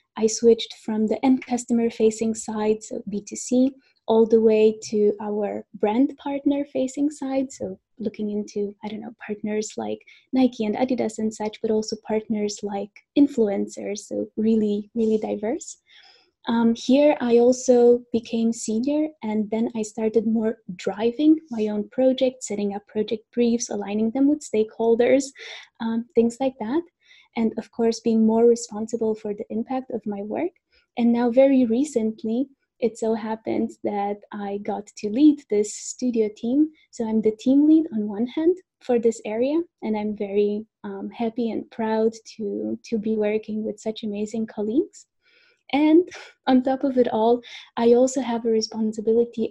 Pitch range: 215-260 Hz